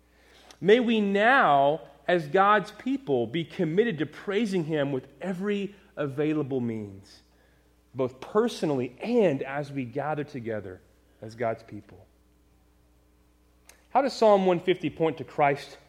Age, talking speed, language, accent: 30-49, 120 wpm, English, American